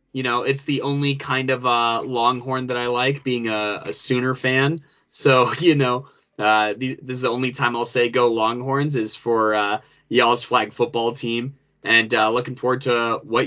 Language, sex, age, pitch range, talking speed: English, male, 20-39, 125-155 Hz, 195 wpm